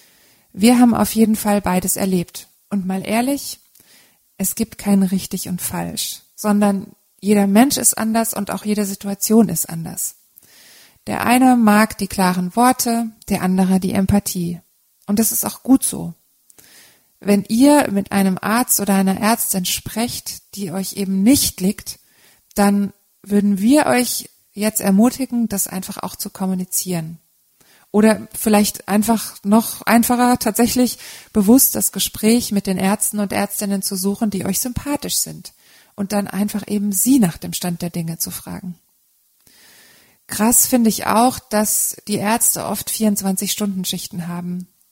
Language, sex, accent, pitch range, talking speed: German, female, German, 190-225 Hz, 145 wpm